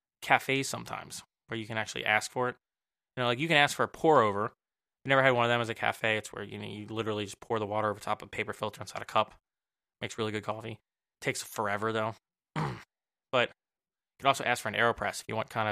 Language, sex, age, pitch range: English, male, 20-39, 105-125 Hz